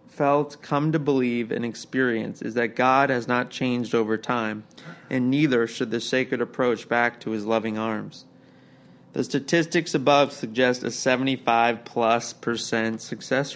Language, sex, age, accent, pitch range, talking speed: English, male, 20-39, American, 115-140 Hz, 150 wpm